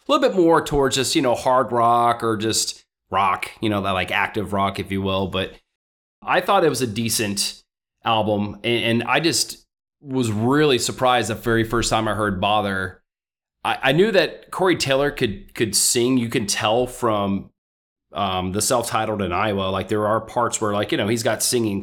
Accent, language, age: American, English, 30-49